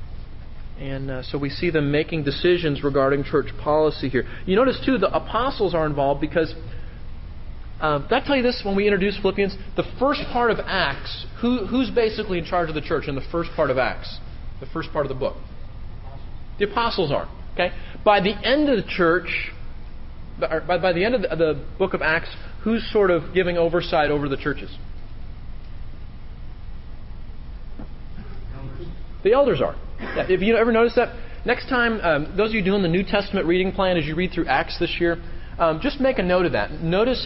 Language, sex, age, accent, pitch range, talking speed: English, male, 30-49, American, 140-200 Hz, 190 wpm